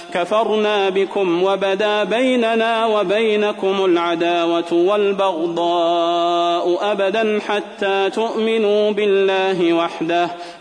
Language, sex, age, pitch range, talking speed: Arabic, male, 30-49, 175-215 Hz, 70 wpm